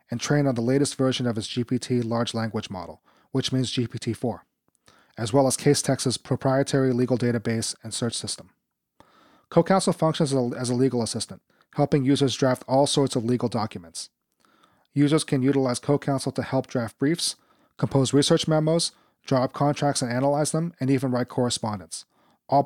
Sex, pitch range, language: male, 120-140 Hz, English